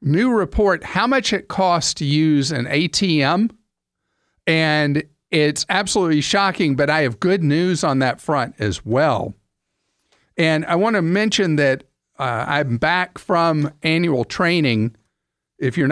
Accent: American